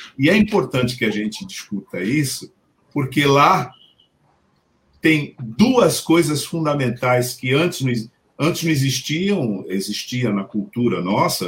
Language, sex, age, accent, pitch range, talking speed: Portuguese, male, 50-69, Brazilian, 125-155 Hz, 120 wpm